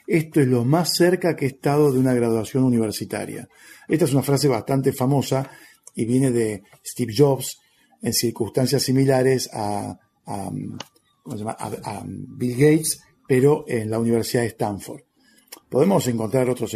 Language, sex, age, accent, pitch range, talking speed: Spanish, male, 50-69, Argentinian, 120-140 Hz, 160 wpm